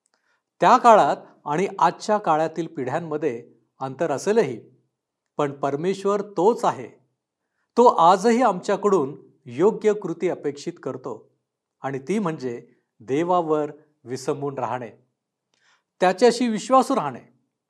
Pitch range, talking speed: 140-185 Hz, 100 wpm